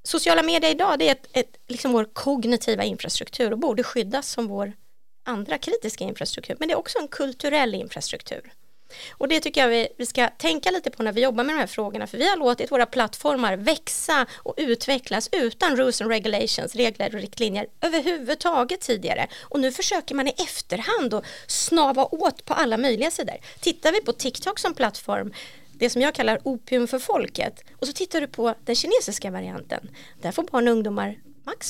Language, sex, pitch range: Swedish, female, 235-315 Hz